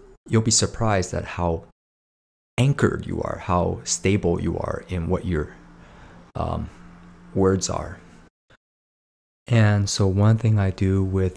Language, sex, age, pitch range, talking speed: English, male, 30-49, 85-105 Hz, 130 wpm